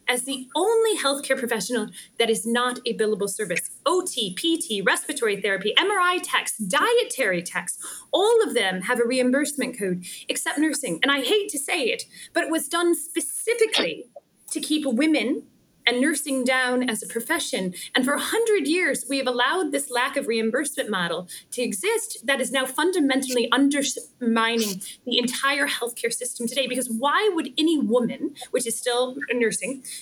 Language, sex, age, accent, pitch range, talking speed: English, female, 20-39, American, 245-330 Hz, 165 wpm